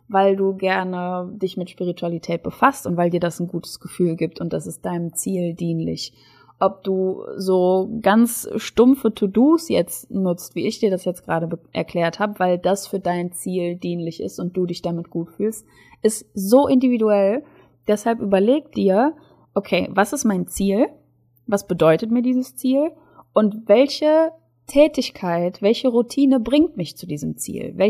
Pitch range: 180-235 Hz